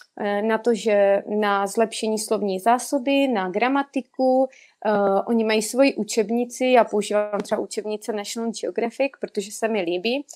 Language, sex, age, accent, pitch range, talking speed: Czech, female, 30-49, native, 210-235 Hz, 135 wpm